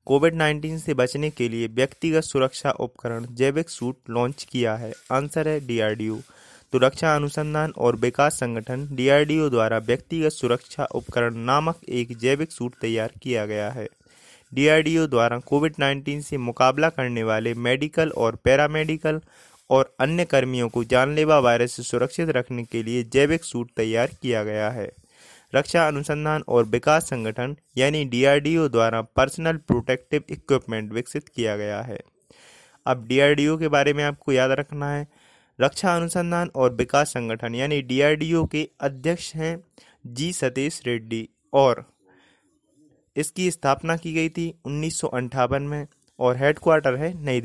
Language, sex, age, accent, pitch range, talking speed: Hindi, male, 20-39, native, 120-155 Hz, 150 wpm